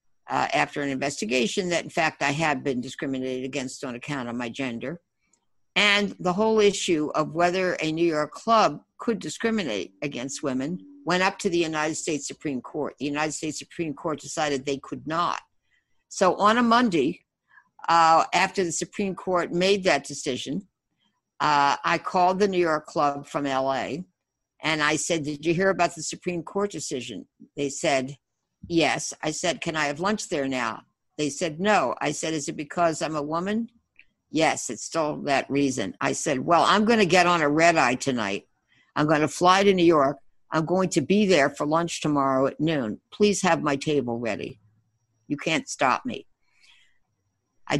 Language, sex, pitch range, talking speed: English, female, 140-180 Hz, 185 wpm